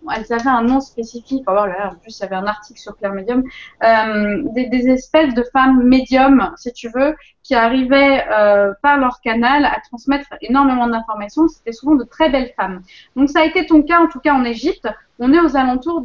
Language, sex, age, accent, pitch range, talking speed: French, female, 20-39, French, 225-280 Hz, 210 wpm